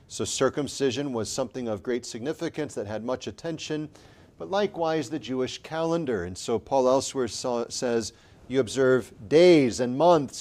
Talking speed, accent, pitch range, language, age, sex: 150 wpm, American, 120-165 Hz, English, 40-59, male